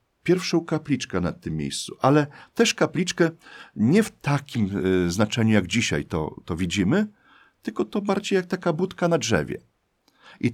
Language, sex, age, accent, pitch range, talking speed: Polish, male, 40-59, native, 100-160 Hz, 150 wpm